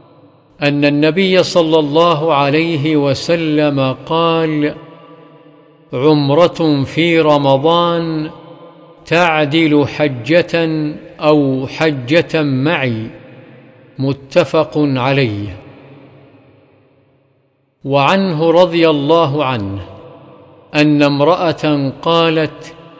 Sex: male